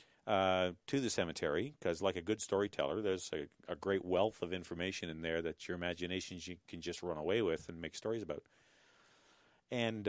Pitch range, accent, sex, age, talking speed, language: 90-120 Hz, American, male, 40-59, 190 wpm, English